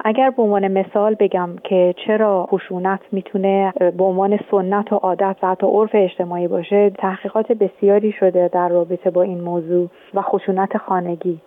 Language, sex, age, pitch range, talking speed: Persian, female, 40-59, 180-210 Hz, 150 wpm